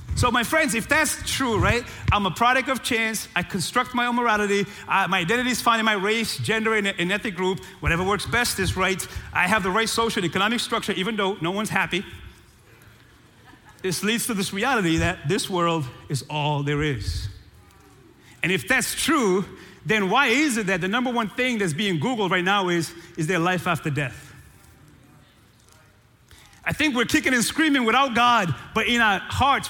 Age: 30-49